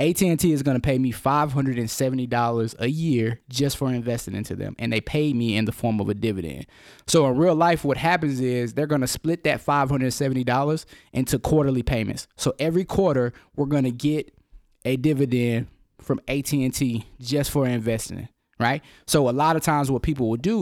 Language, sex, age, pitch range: English, male, 20-39, 125-150 Hz